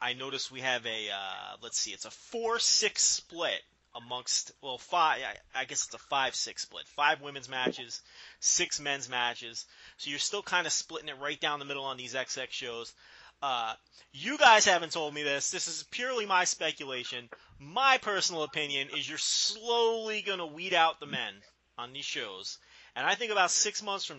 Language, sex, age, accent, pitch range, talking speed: English, male, 30-49, American, 140-195 Hz, 185 wpm